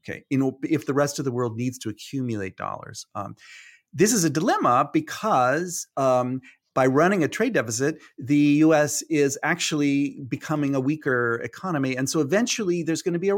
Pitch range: 125-150 Hz